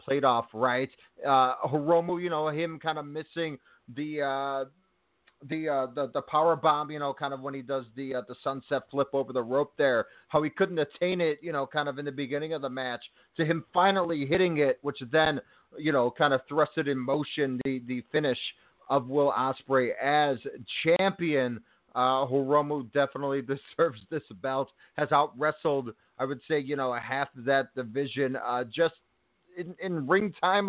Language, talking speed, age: English, 190 wpm, 30-49